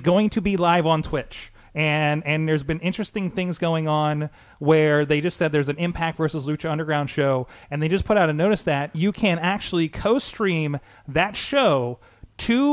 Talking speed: 190 wpm